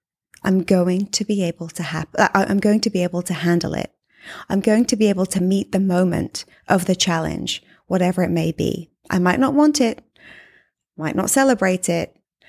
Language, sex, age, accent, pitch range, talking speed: English, female, 20-39, British, 180-235 Hz, 165 wpm